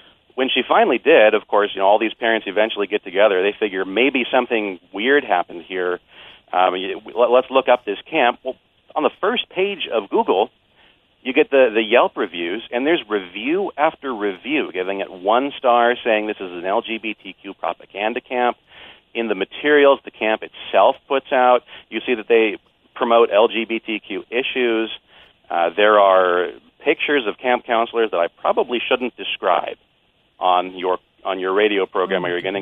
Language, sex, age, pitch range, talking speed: English, male, 40-59, 105-135 Hz, 170 wpm